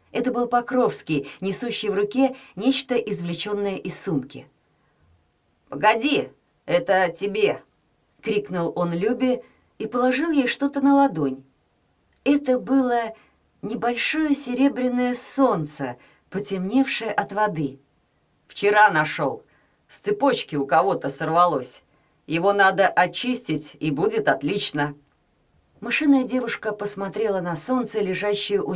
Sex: female